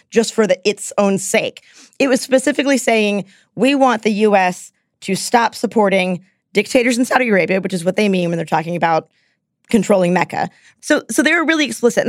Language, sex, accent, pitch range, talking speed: English, female, American, 190-245 Hz, 195 wpm